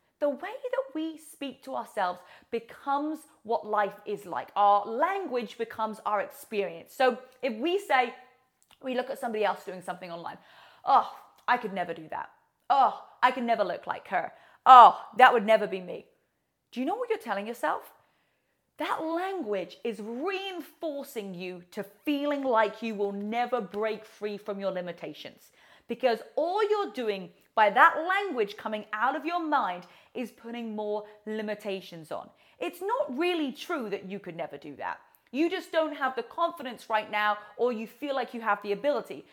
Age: 30-49